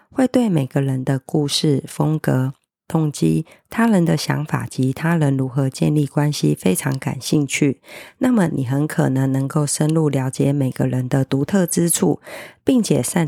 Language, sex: Chinese, female